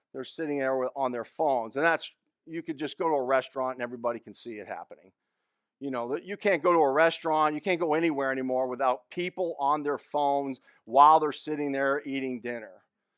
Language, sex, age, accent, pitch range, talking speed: English, male, 50-69, American, 135-170 Hz, 205 wpm